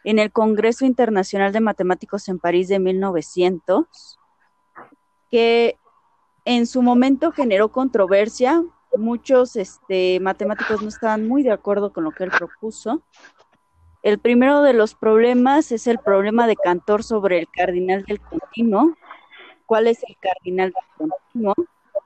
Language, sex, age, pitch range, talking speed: Spanish, female, 30-49, 195-250 Hz, 135 wpm